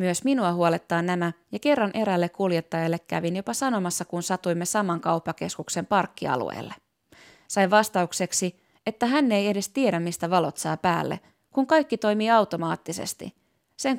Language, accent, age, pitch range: Finnish, native, 20-39, 175-215 Hz